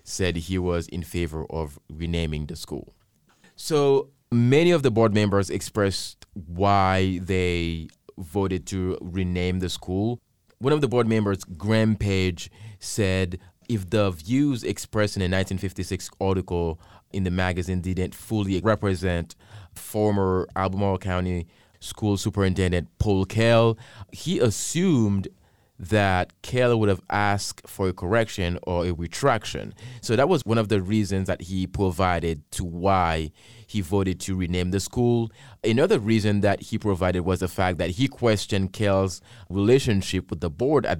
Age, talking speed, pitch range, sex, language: 30-49, 145 wpm, 90-110 Hz, male, English